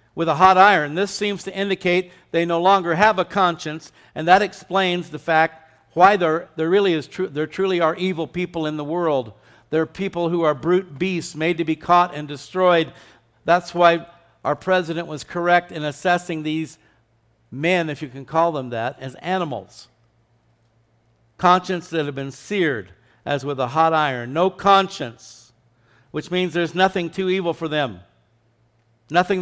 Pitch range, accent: 115-175 Hz, American